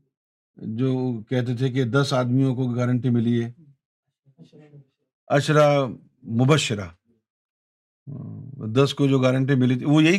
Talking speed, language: 120 wpm, Urdu